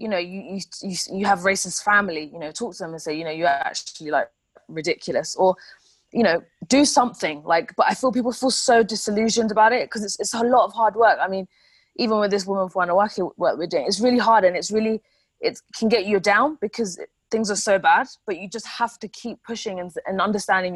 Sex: female